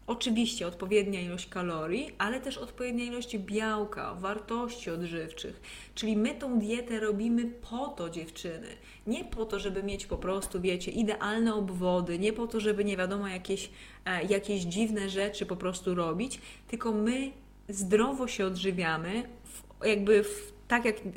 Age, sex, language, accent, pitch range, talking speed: 20-39, female, Polish, native, 195-235 Hz, 150 wpm